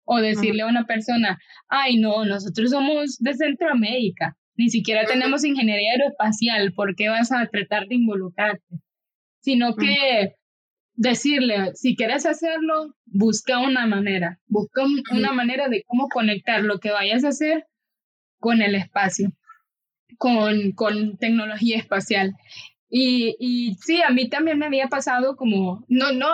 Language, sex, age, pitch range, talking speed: English, female, 10-29, 205-250 Hz, 140 wpm